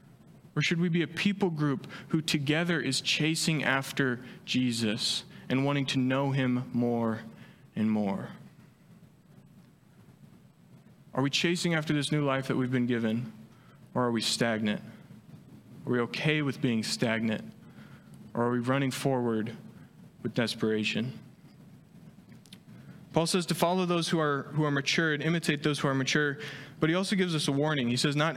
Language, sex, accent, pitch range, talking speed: English, male, American, 125-155 Hz, 160 wpm